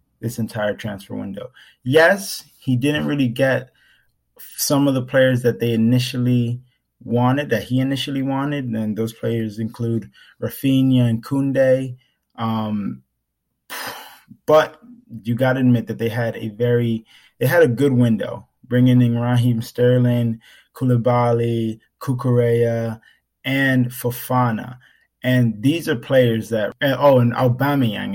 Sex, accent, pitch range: male, American, 115-125 Hz